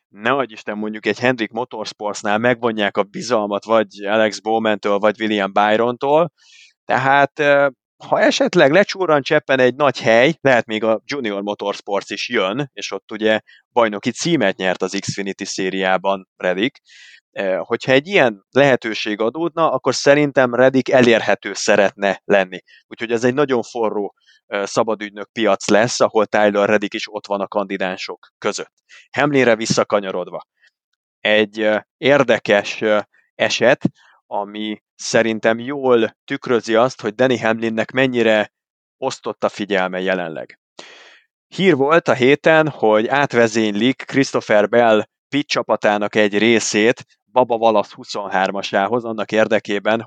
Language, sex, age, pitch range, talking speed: Hungarian, male, 30-49, 105-130 Hz, 120 wpm